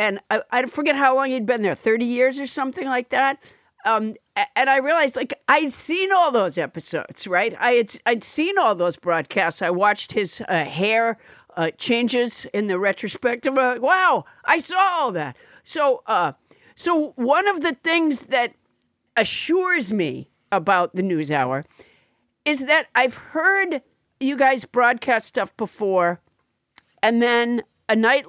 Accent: American